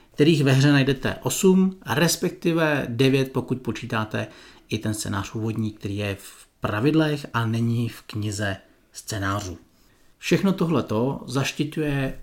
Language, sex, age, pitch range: Czech, male, 40-59, 120-150 Hz